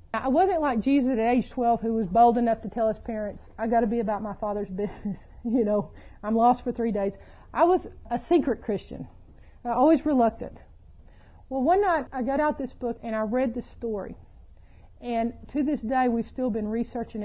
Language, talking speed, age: English, 200 wpm, 40-59